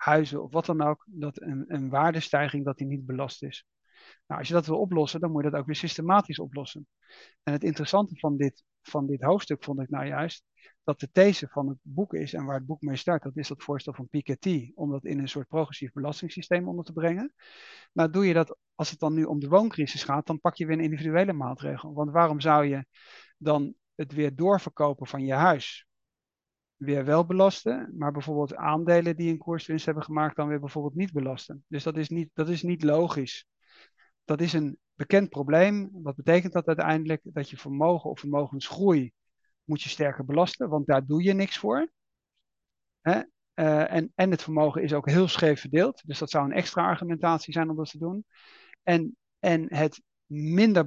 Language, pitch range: Dutch, 145-170 Hz